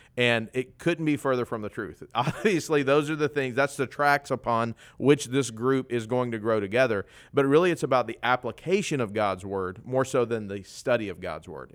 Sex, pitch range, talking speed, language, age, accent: male, 115-140 Hz, 215 wpm, English, 40-59, American